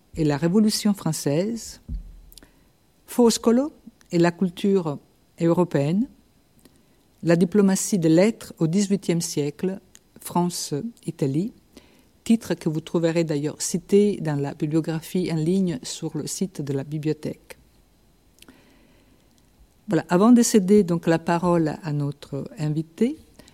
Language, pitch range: French, 160-200 Hz